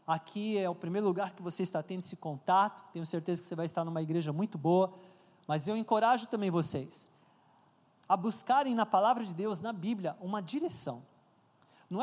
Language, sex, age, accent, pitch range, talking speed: Portuguese, male, 20-39, Brazilian, 165-205 Hz, 185 wpm